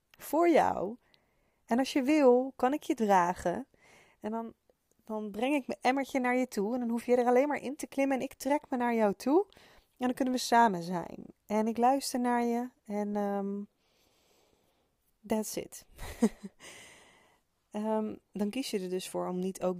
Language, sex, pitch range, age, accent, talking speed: Dutch, female, 180-215 Hz, 20-39, Dutch, 180 wpm